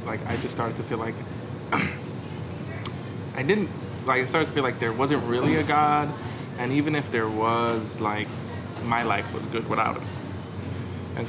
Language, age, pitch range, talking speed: English, 20-39, 110-125 Hz, 175 wpm